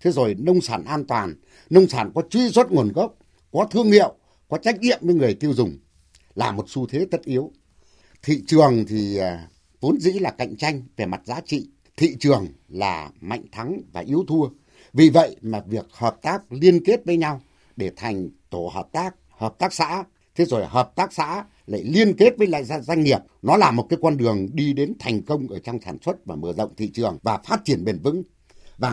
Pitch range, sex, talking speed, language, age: 105-165 Hz, male, 215 wpm, Vietnamese, 60-79